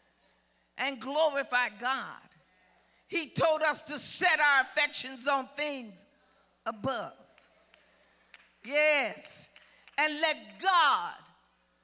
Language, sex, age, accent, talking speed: English, female, 50-69, American, 85 wpm